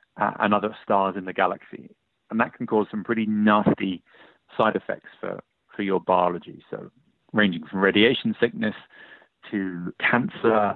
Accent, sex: British, male